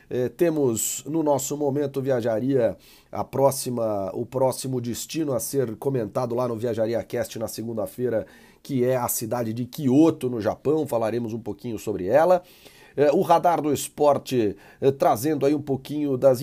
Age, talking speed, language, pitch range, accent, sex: 40-59, 150 wpm, Portuguese, 115-145 Hz, Brazilian, male